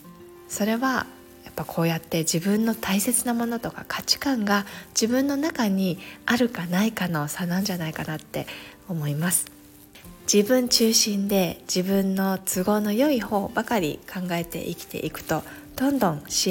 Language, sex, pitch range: Japanese, female, 165-200 Hz